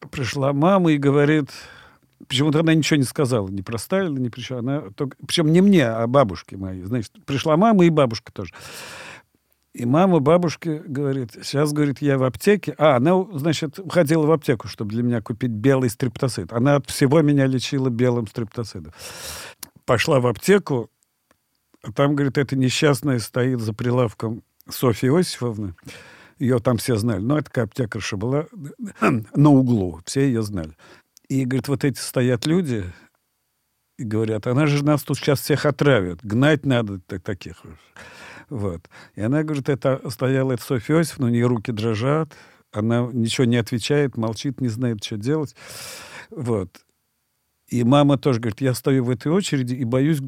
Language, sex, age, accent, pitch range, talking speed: Russian, male, 50-69, native, 120-145 Hz, 160 wpm